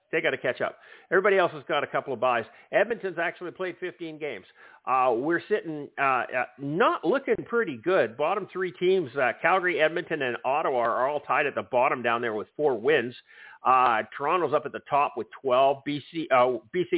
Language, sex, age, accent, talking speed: English, male, 50-69, American, 200 wpm